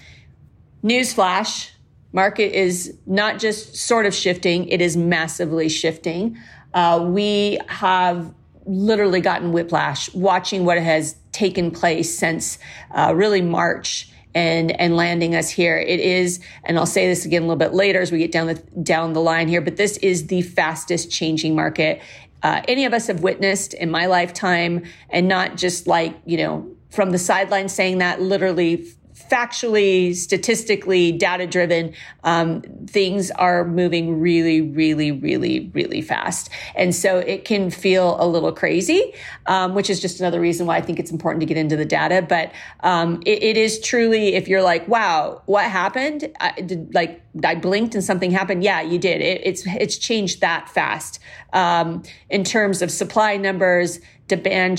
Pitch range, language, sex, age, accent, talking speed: 170-195 Hz, English, female, 40-59, American, 170 wpm